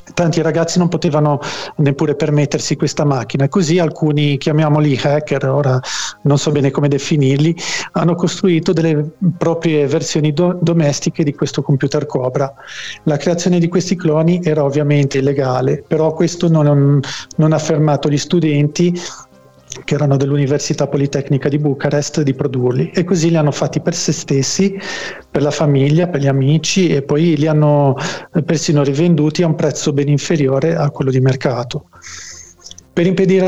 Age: 40-59